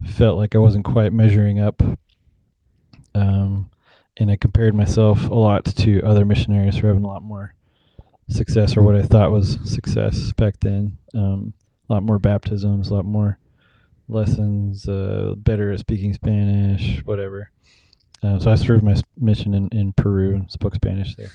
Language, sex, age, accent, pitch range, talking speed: English, male, 20-39, American, 100-110 Hz, 165 wpm